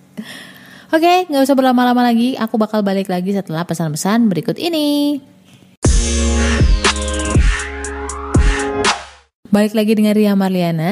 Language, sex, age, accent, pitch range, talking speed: Indonesian, female, 20-39, native, 175-230 Hz, 105 wpm